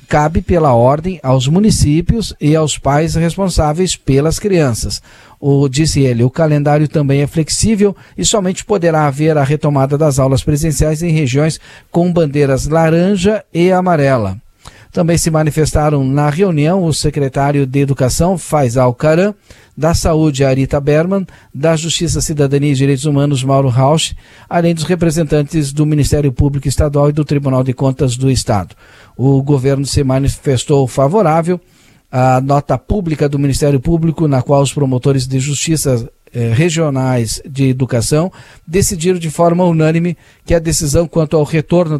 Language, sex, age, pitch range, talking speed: Portuguese, male, 50-69, 135-165 Hz, 145 wpm